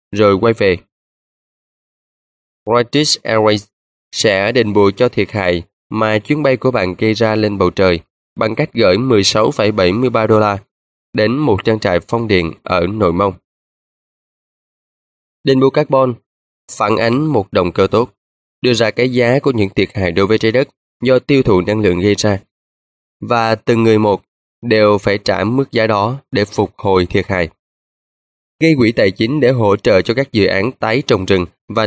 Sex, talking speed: male, 175 wpm